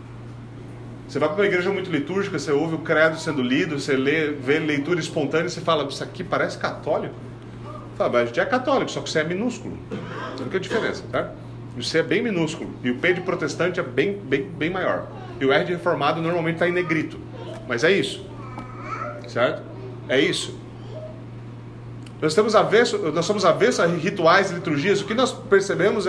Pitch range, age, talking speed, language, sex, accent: 140-210 Hz, 30-49, 190 wpm, Portuguese, male, Brazilian